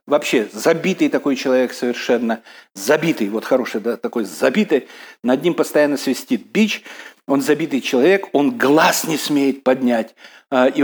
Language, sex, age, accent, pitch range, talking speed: Russian, male, 60-79, native, 135-180 Hz, 135 wpm